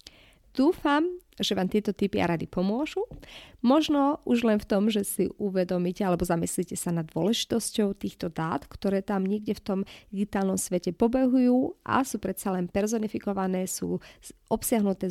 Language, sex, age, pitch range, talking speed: Slovak, female, 30-49, 185-235 Hz, 150 wpm